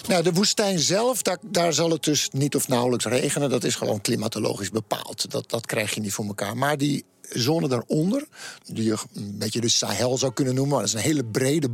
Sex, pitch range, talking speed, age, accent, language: male, 120-155 Hz, 220 wpm, 50-69, Dutch, Dutch